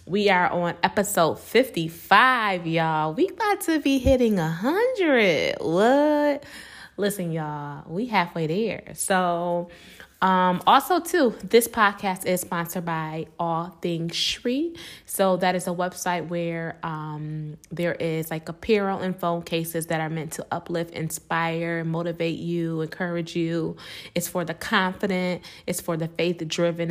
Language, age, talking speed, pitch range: English, 20-39, 140 wpm, 165-200 Hz